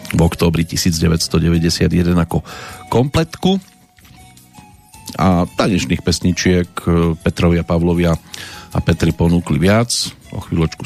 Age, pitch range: 50-69, 85-110 Hz